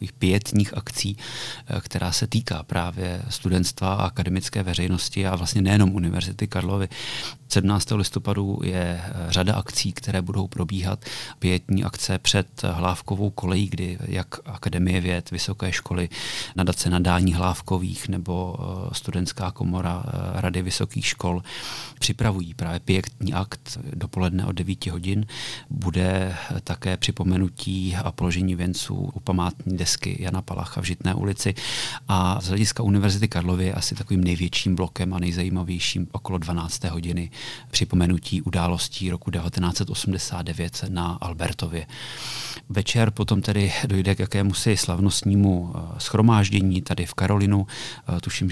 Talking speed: 120 wpm